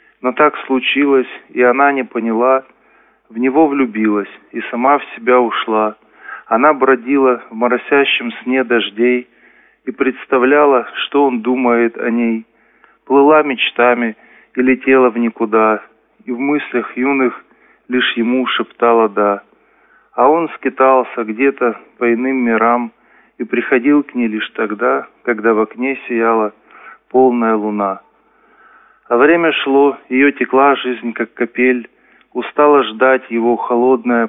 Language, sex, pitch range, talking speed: Russian, male, 115-130 Hz, 130 wpm